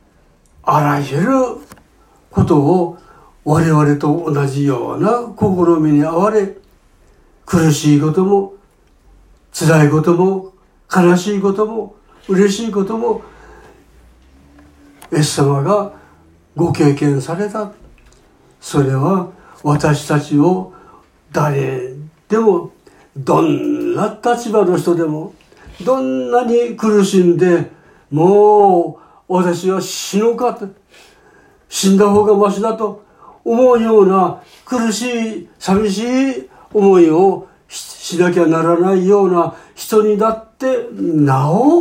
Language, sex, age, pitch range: Japanese, male, 60-79, 155-215 Hz